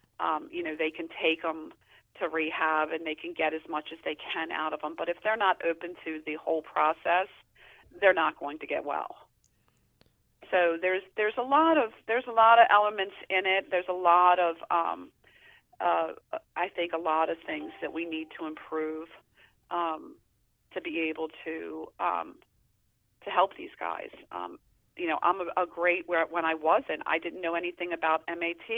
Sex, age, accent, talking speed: female, 40-59, American, 195 wpm